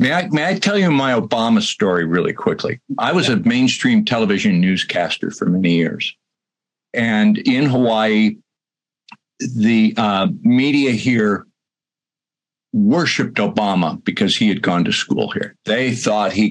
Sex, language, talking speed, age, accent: male, English, 140 wpm, 50-69, American